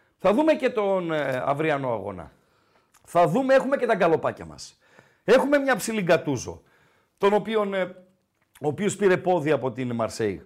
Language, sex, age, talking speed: Greek, male, 50-69, 145 wpm